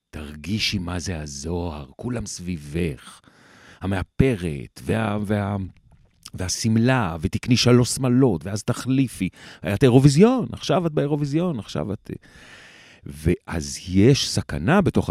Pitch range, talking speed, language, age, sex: 90-130 Hz, 100 wpm, Hebrew, 40-59, male